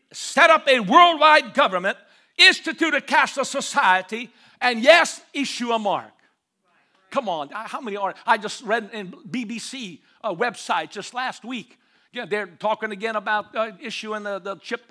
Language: English